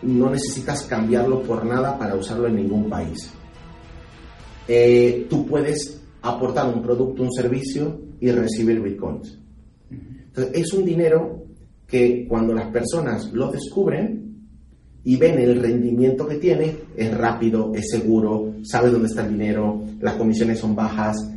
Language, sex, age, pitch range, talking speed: Spanish, male, 30-49, 110-150 Hz, 140 wpm